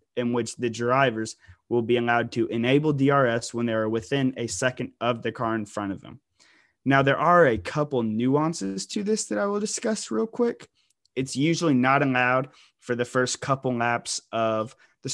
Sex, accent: male, American